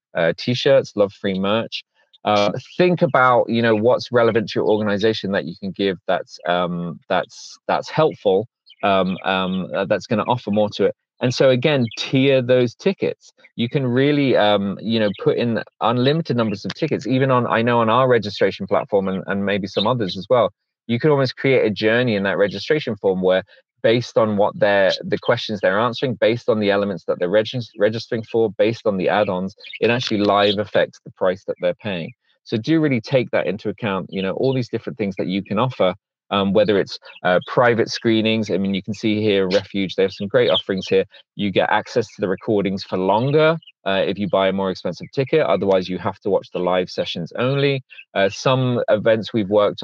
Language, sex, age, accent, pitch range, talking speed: English, male, 20-39, British, 95-125 Hz, 210 wpm